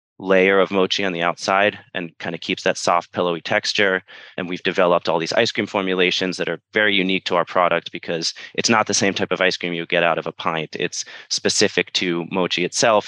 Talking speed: 225 wpm